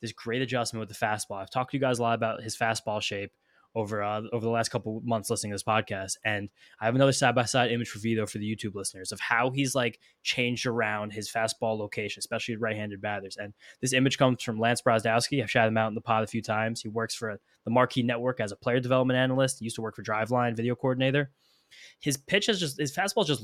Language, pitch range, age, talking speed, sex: English, 110-125 Hz, 10-29, 250 wpm, male